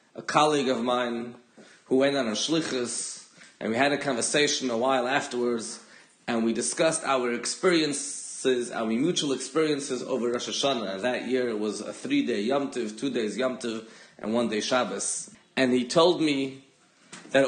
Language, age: English, 30-49